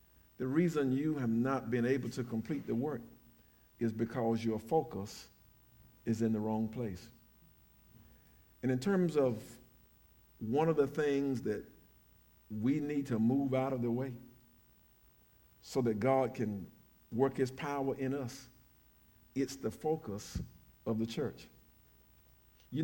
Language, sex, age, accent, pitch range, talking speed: English, male, 50-69, American, 115-145 Hz, 140 wpm